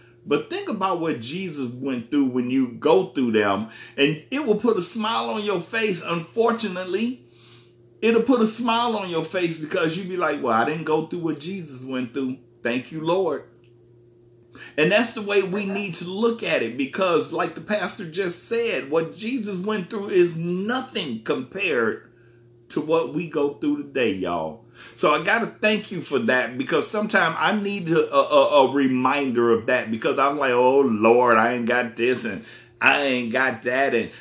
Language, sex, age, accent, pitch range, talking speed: English, male, 50-69, American, 120-200 Hz, 190 wpm